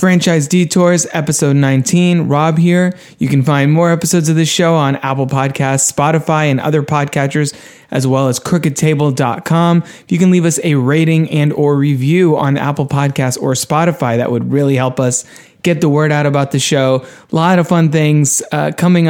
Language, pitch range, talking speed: English, 140-170 Hz, 185 wpm